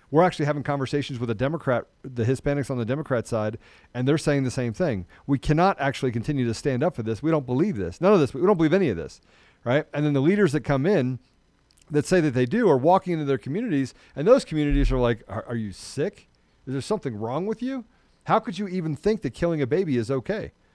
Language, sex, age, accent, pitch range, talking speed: English, male, 40-59, American, 115-150 Hz, 245 wpm